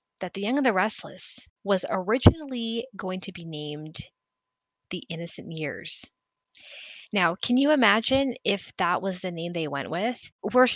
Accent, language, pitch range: American, English, 165-205 Hz